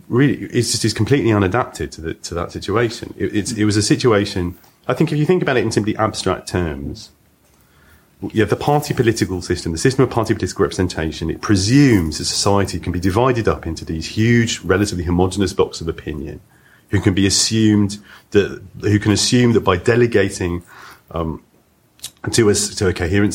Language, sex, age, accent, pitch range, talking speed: English, male, 30-49, British, 85-110 Hz, 190 wpm